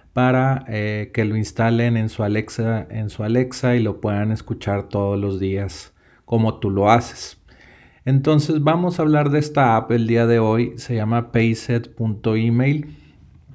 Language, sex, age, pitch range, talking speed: Spanish, male, 40-59, 110-125 Hz, 160 wpm